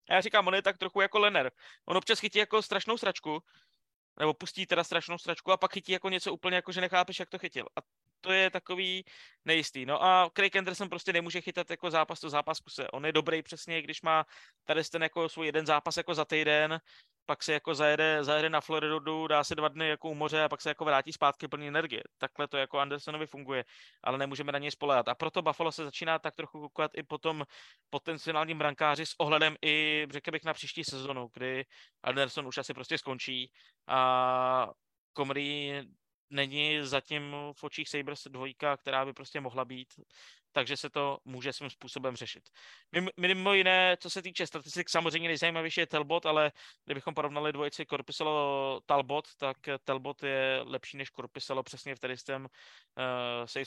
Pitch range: 135-165 Hz